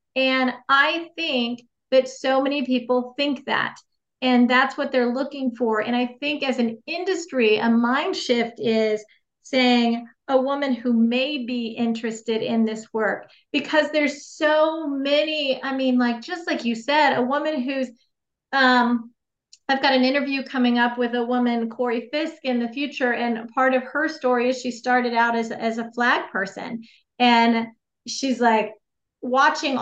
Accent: American